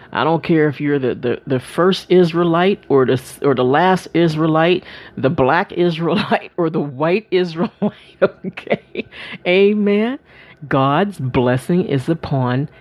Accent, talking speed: American, 135 wpm